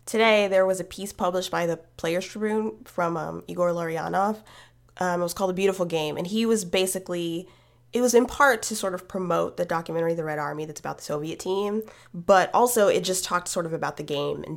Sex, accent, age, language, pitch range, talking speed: female, American, 20-39, English, 165-190 Hz, 220 wpm